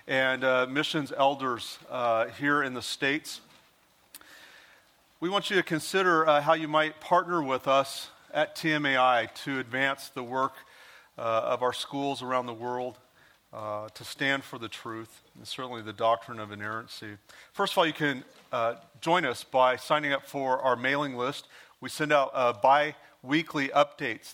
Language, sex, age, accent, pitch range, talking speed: English, male, 40-59, American, 120-145 Hz, 165 wpm